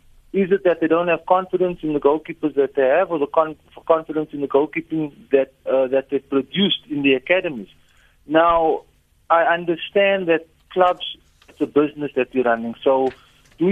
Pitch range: 145-180 Hz